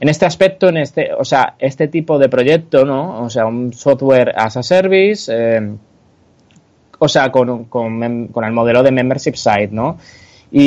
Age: 20-39